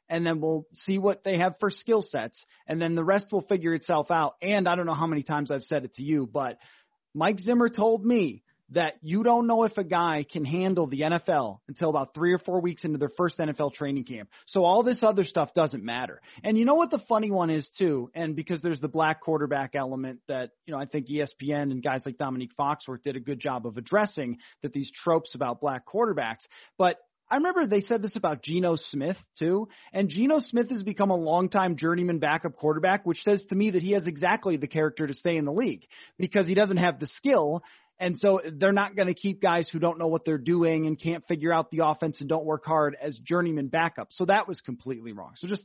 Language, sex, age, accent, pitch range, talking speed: English, male, 30-49, American, 150-195 Hz, 235 wpm